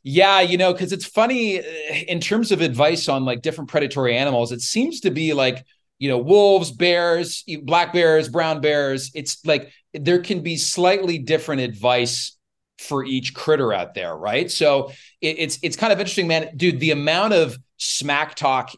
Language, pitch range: English, 125-170 Hz